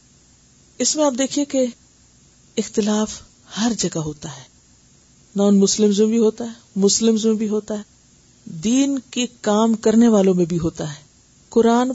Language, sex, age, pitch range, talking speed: Urdu, female, 50-69, 190-245 Hz, 135 wpm